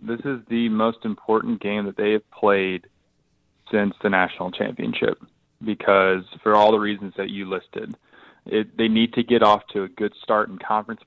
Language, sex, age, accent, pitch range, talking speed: English, male, 20-39, American, 95-110 Hz, 185 wpm